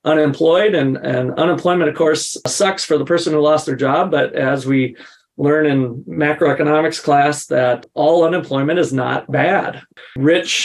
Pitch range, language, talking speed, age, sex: 130-155 Hz, English, 160 wpm, 40-59, male